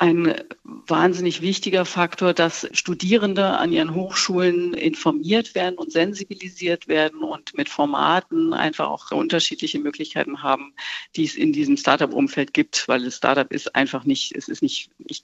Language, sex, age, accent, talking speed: German, female, 50-69, German, 150 wpm